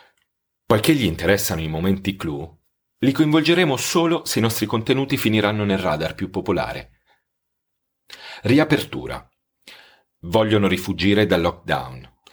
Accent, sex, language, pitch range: native, male, Italian, 90-130 Hz